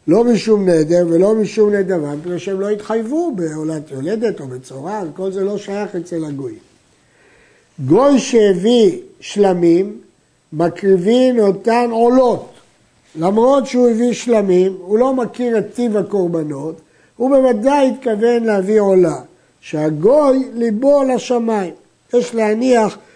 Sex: male